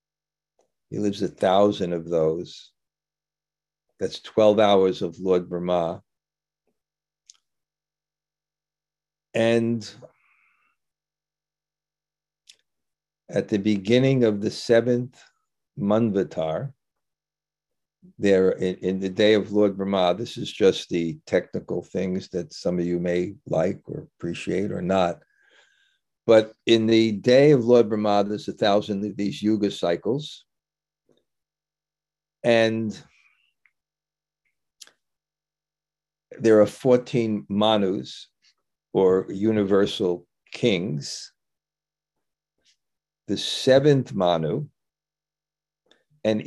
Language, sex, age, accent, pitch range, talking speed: English, male, 50-69, American, 100-155 Hz, 90 wpm